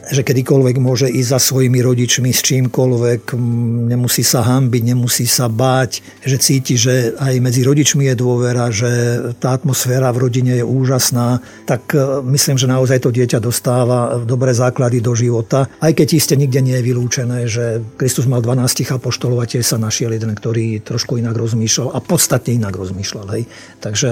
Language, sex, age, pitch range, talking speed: Slovak, male, 50-69, 120-135 Hz, 165 wpm